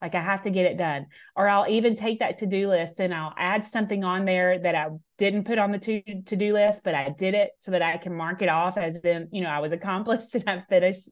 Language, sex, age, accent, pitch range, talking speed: English, female, 30-49, American, 165-205 Hz, 265 wpm